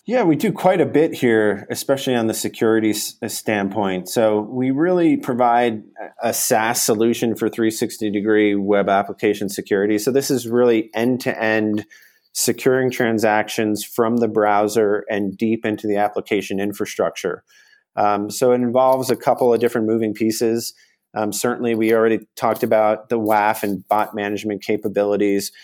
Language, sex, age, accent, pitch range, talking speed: English, male, 30-49, American, 105-120 Hz, 145 wpm